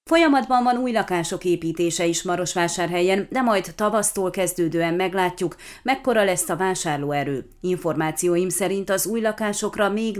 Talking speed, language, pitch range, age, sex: 130 wpm, Hungarian, 170-215 Hz, 30-49, female